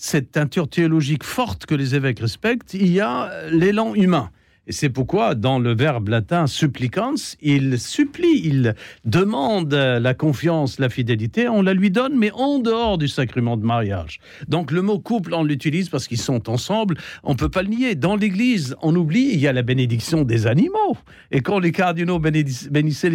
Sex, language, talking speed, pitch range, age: male, French, 200 wpm, 130-190 Hz, 60-79